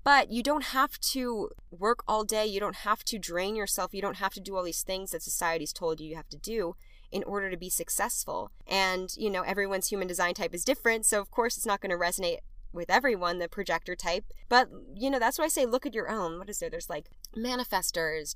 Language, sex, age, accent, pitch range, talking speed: English, female, 10-29, American, 165-230 Hz, 240 wpm